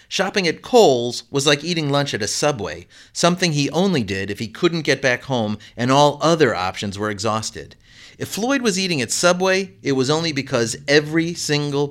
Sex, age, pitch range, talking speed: male, 30-49, 110-155 Hz, 190 wpm